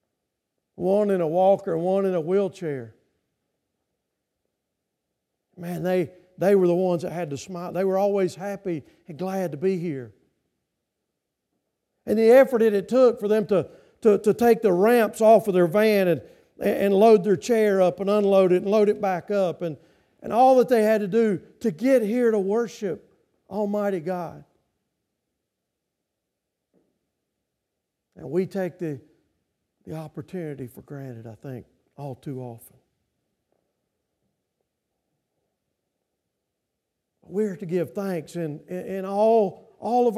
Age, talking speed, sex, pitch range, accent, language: 50-69, 145 wpm, male, 170-215 Hz, American, English